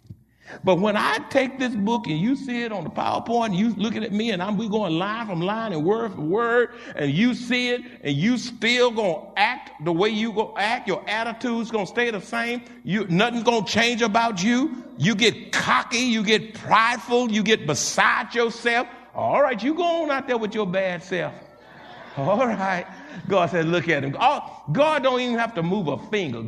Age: 60-79